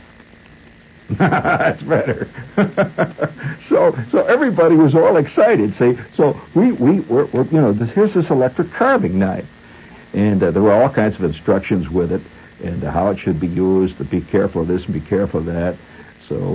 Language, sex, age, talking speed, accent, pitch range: English, male, 60-79, 180 wpm, American, 80-105 Hz